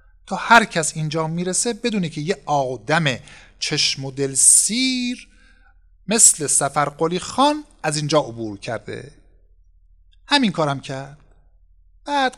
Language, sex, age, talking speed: Persian, male, 50-69, 115 wpm